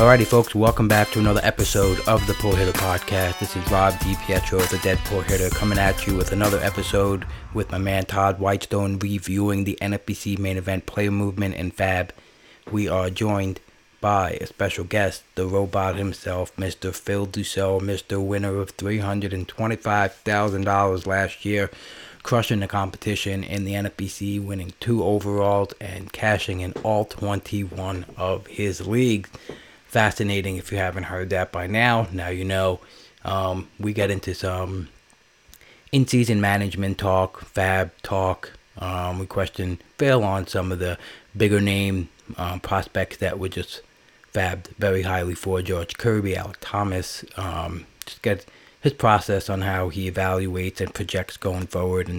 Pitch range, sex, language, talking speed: 95-100 Hz, male, English, 155 wpm